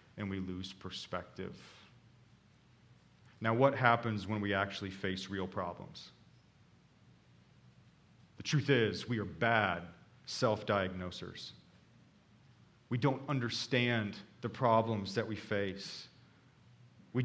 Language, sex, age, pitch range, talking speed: English, male, 40-59, 110-140 Hz, 100 wpm